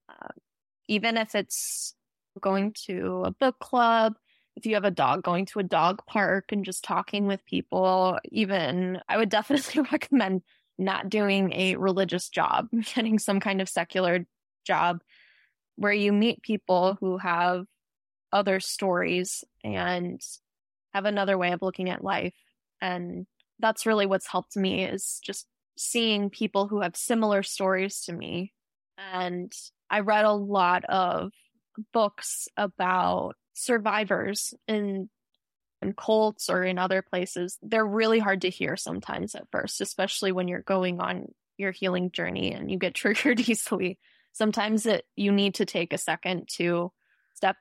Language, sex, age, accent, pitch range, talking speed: English, female, 10-29, American, 185-215 Hz, 150 wpm